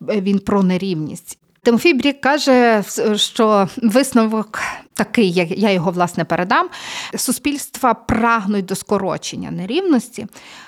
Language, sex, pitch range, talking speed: Ukrainian, female, 185-240 Hz, 105 wpm